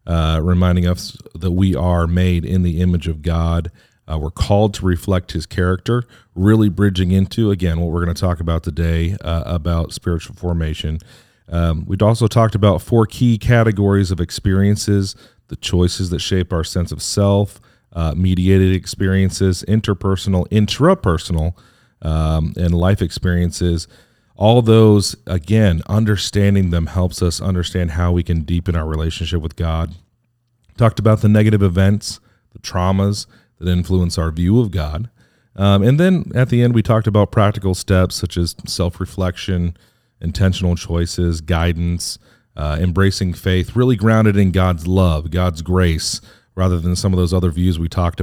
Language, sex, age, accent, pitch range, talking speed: English, male, 40-59, American, 85-105 Hz, 160 wpm